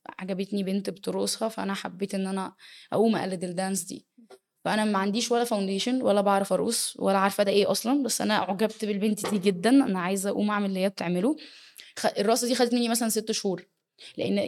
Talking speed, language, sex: 185 wpm, Arabic, female